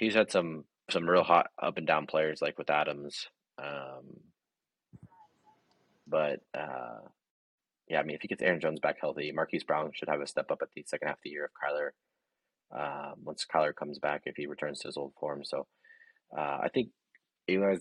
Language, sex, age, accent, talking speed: English, male, 30-49, American, 190 wpm